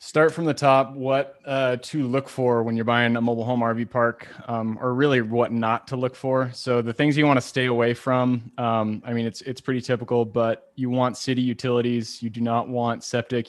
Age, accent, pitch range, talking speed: 20-39, American, 115-135 Hz, 220 wpm